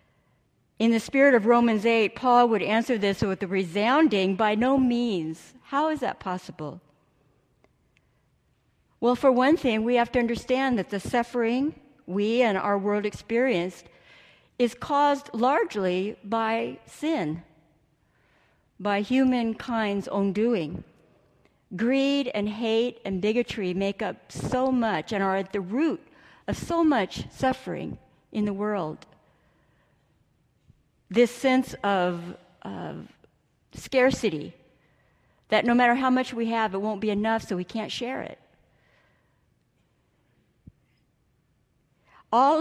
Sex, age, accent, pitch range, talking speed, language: female, 60-79, American, 195-245 Hz, 125 wpm, English